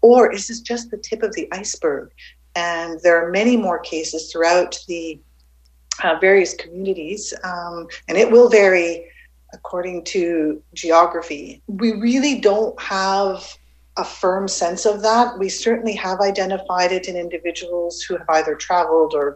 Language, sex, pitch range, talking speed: English, female, 165-205 Hz, 150 wpm